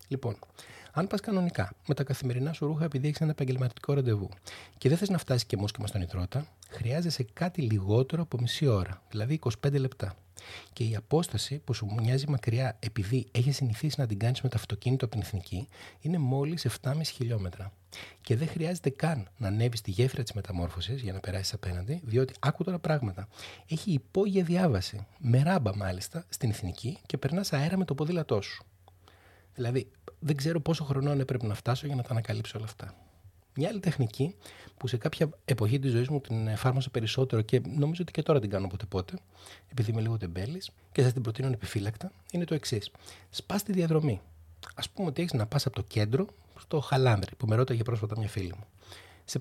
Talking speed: 190 wpm